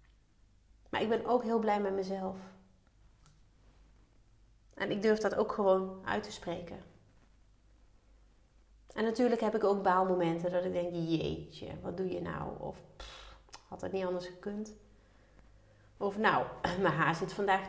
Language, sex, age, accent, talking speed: Dutch, female, 30-49, Dutch, 150 wpm